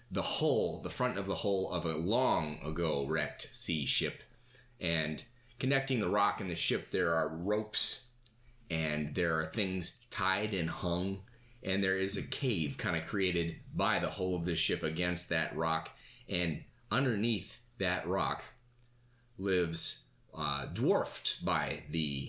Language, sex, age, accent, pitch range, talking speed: English, male, 30-49, American, 85-120 Hz, 155 wpm